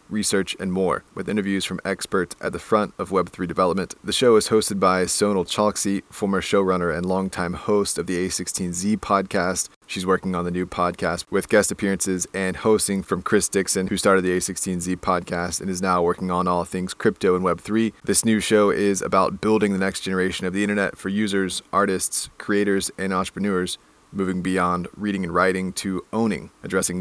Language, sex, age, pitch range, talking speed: English, male, 30-49, 90-100 Hz, 185 wpm